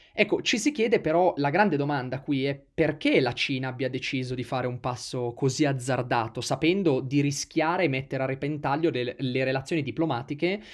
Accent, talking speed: native, 180 wpm